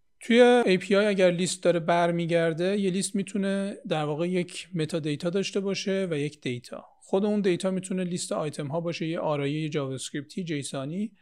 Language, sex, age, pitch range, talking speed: Persian, male, 40-59, 150-185 Hz, 175 wpm